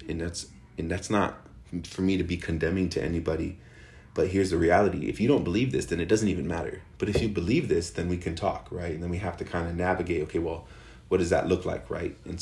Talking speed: 255 wpm